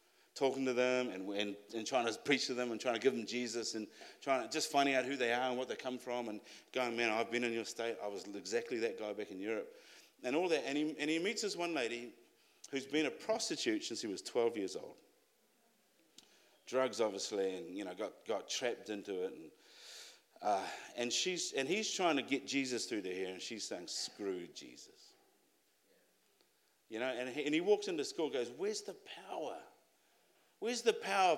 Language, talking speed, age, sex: English, 215 wpm, 50-69, male